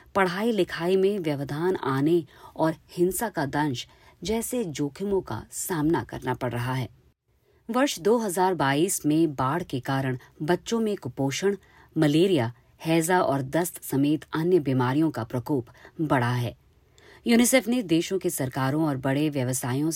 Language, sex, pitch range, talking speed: Hindi, female, 135-185 Hz, 135 wpm